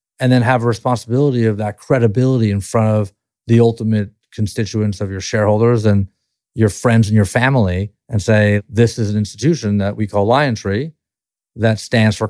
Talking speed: 180 wpm